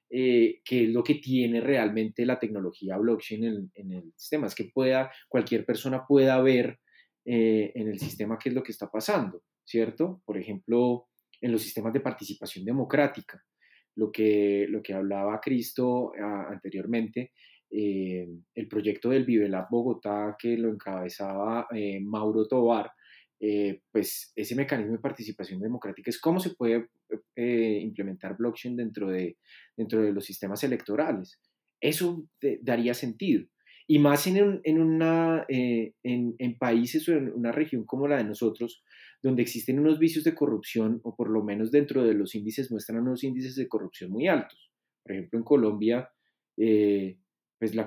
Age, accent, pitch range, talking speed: 20-39, Colombian, 105-130 Hz, 165 wpm